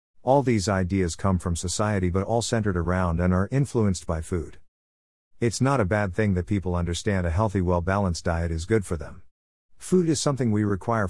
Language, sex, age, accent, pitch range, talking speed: English, male, 50-69, American, 90-110 Hz, 195 wpm